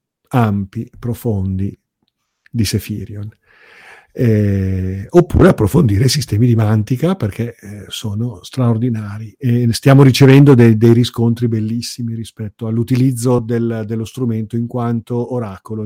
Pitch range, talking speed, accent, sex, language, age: 105-125 Hz, 115 wpm, native, male, Italian, 50-69